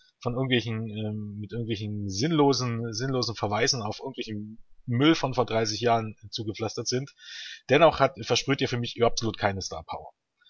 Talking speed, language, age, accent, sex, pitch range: 160 wpm, German, 30-49, German, male, 115-145 Hz